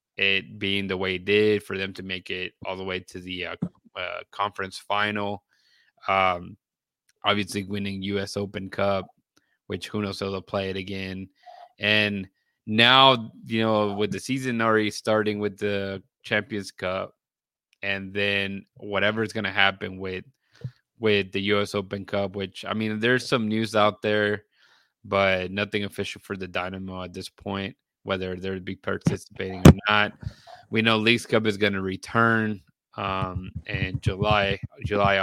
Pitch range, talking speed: 95-110 Hz, 165 wpm